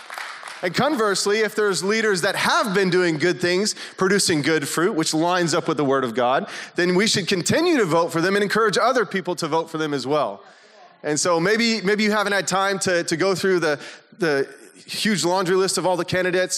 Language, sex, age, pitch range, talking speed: English, male, 30-49, 150-195 Hz, 220 wpm